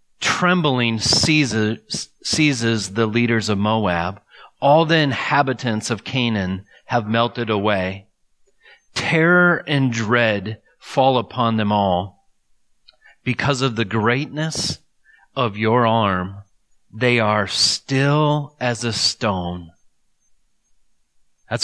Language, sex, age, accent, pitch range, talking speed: English, male, 30-49, American, 110-150 Hz, 100 wpm